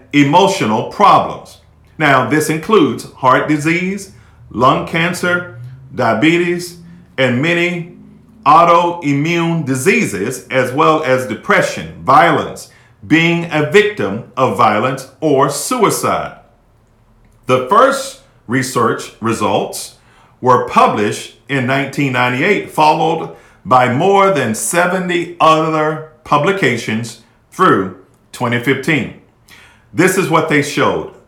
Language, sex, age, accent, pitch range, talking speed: English, male, 50-69, American, 125-170 Hz, 90 wpm